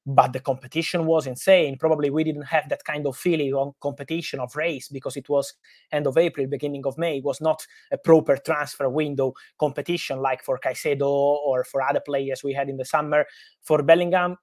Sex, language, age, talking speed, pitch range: male, English, 20-39, 200 wpm, 140-160 Hz